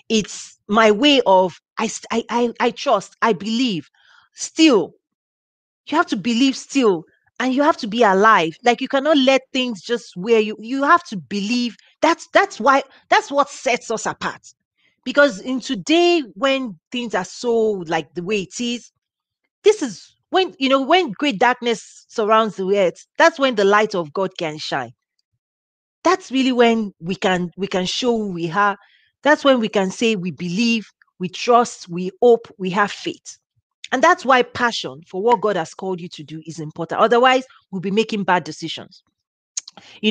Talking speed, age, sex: 180 wpm, 40-59, female